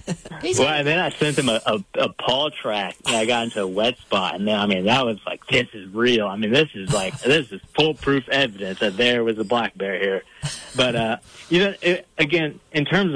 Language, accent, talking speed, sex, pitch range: English, American, 235 wpm, male, 115-140 Hz